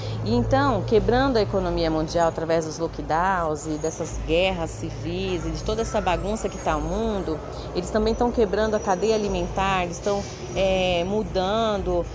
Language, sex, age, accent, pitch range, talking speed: Portuguese, female, 30-49, Brazilian, 175-215 Hz, 155 wpm